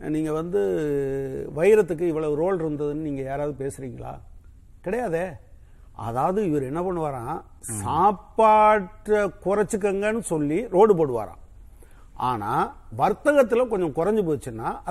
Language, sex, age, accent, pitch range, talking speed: Tamil, male, 50-69, native, 140-205 Hz, 95 wpm